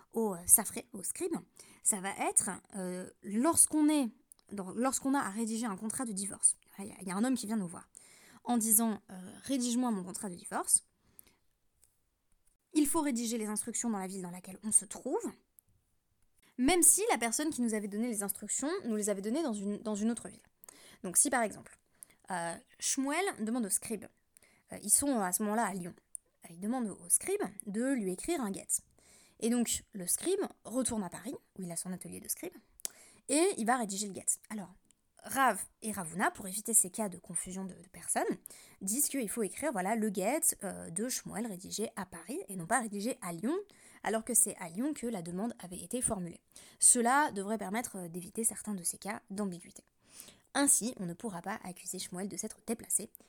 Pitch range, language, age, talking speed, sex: 190-250 Hz, French, 20-39, 205 wpm, female